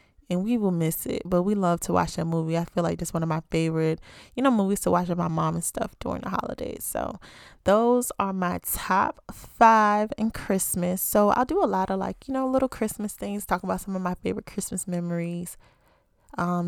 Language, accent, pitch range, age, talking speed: English, American, 170-200 Hz, 20-39, 225 wpm